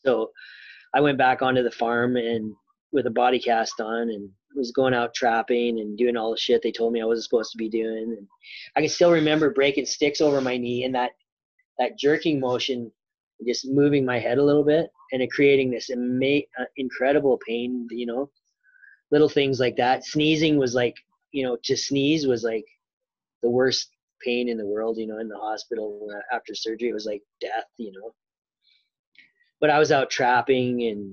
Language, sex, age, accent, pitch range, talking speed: English, male, 20-39, American, 115-140 Hz, 195 wpm